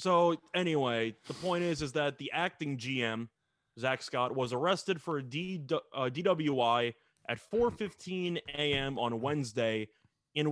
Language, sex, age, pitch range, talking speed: English, male, 20-39, 130-175 Hz, 130 wpm